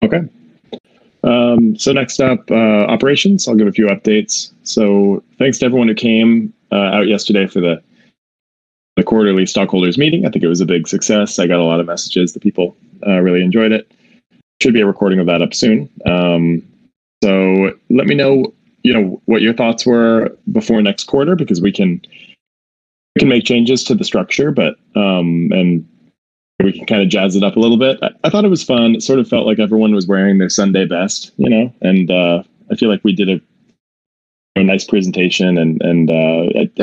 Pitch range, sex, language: 90-115 Hz, male, English